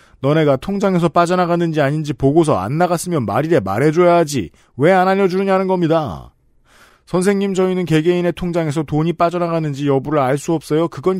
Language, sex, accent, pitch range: Korean, male, native, 140-175 Hz